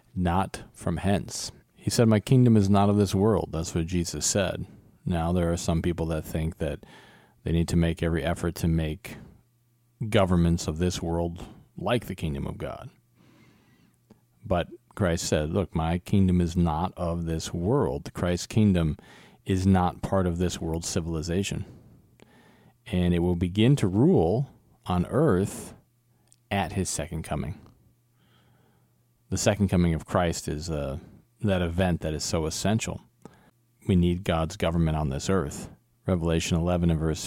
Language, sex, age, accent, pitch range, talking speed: English, male, 40-59, American, 85-105 Hz, 155 wpm